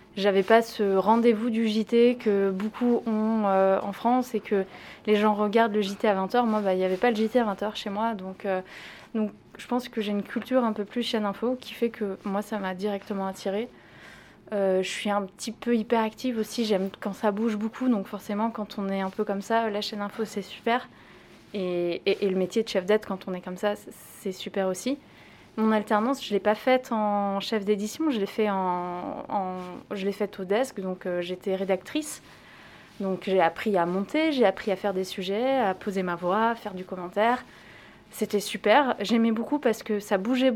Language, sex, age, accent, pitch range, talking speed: French, female, 20-39, French, 195-230 Hz, 220 wpm